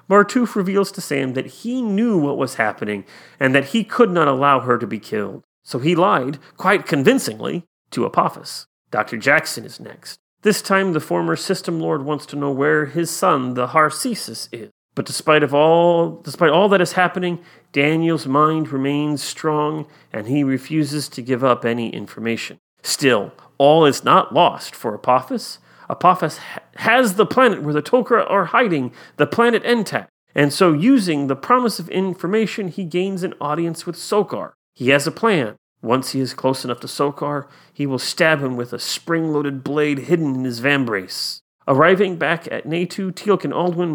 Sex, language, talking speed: male, English, 180 wpm